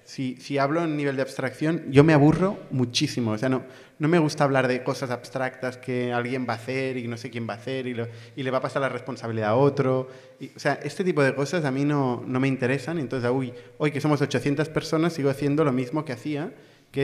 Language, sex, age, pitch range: Spanish, male, 30-49, 125-150 Hz